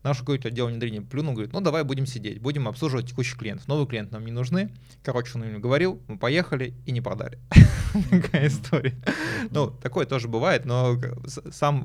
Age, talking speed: 20-39, 180 wpm